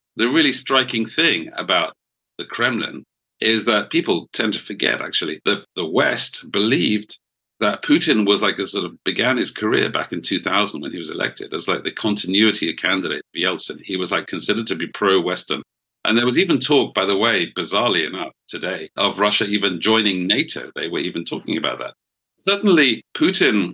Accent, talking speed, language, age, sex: British, 185 wpm, English, 50-69, male